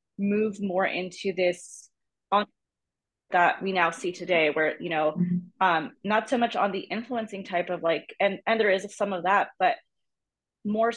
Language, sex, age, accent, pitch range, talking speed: English, female, 20-39, American, 180-210 Hz, 175 wpm